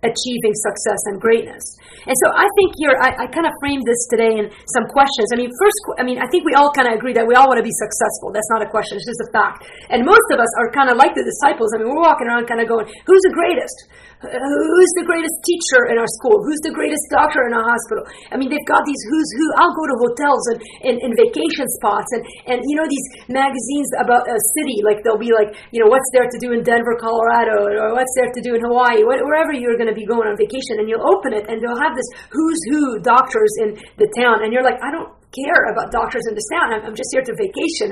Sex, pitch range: female, 225-305 Hz